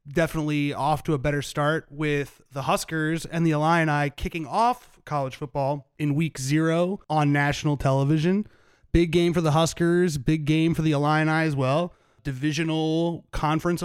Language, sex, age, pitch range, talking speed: English, male, 30-49, 130-155 Hz, 155 wpm